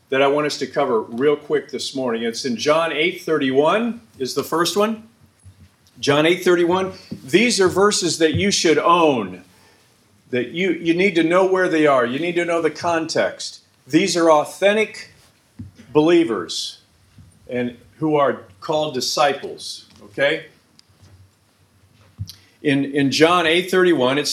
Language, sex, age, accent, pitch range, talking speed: English, male, 50-69, American, 135-180 Hz, 140 wpm